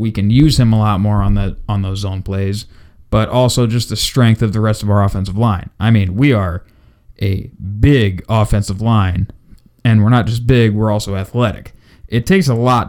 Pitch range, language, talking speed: 100-120 Hz, English, 210 wpm